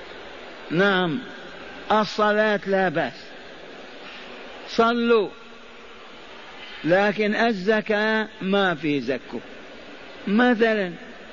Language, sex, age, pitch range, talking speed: Arabic, male, 50-69, 195-225 Hz, 60 wpm